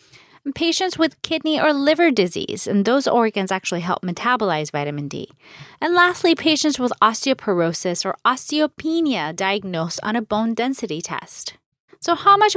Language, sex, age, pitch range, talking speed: English, female, 30-49, 175-270 Hz, 145 wpm